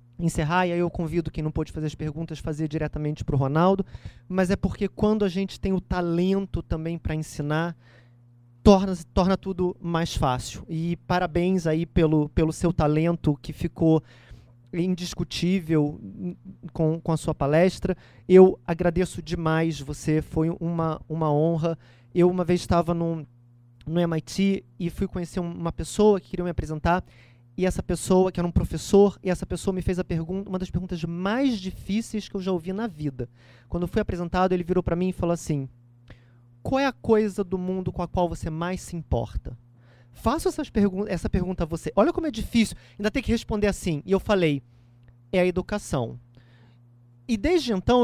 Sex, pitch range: male, 155-190 Hz